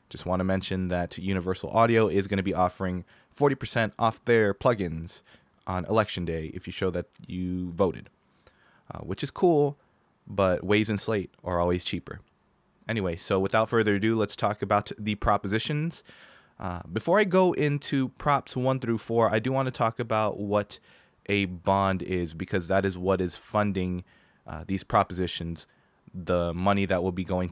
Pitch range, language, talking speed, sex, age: 90-110 Hz, English, 175 wpm, male, 20-39